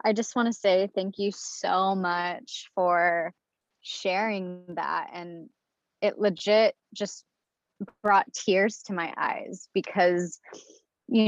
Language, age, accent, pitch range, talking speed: English, 20-39, American, 190-235 Hz, 120 wpm